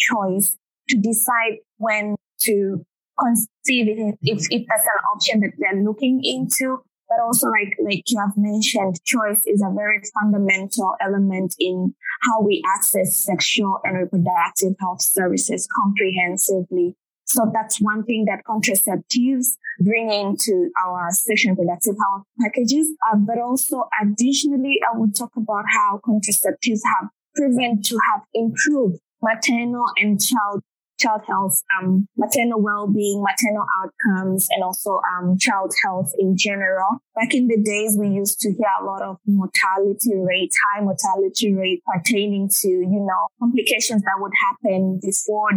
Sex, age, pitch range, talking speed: female, 20-39, 195-230 Hz, 145 wpm